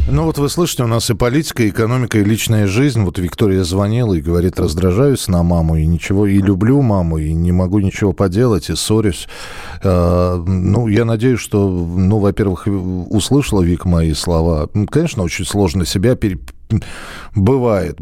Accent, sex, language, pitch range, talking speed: native, male, Russian, 85-115 Hz, 160 wpm